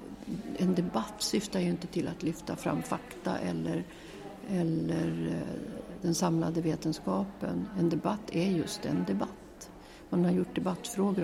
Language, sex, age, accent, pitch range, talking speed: Swedish, female, 50-69, native, 165-210 Hz, 135 wpm